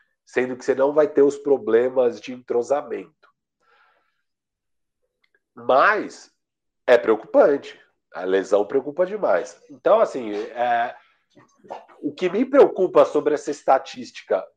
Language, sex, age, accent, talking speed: Portuguese, male, 50-69, Brazilian, 105 wpm